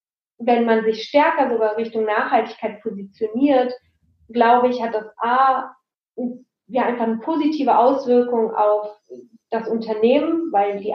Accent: German